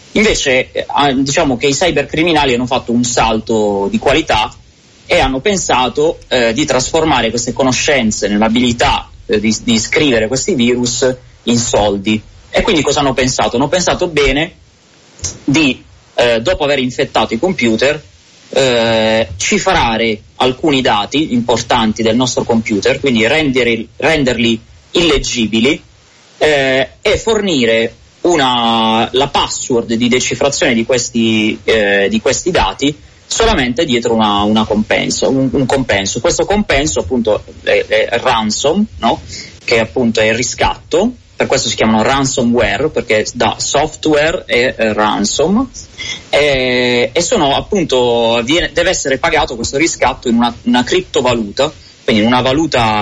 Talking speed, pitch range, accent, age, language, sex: 130 wpm, 110-140 Hz, native, 30-49, Italian, male